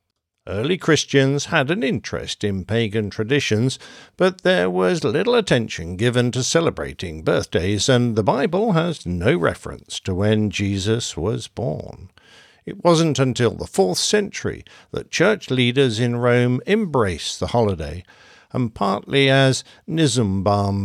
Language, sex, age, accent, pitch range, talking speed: English, male, 60-79, British, 100-150 Hz, 130 wpm